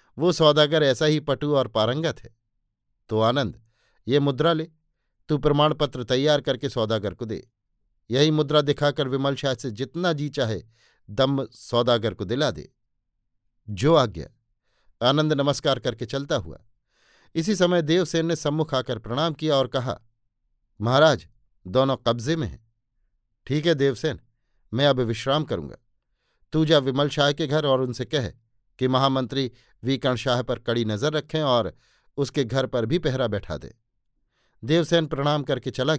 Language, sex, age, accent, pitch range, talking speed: Hindi, male, 50-69, native, 115-150 Hz, 155 wpm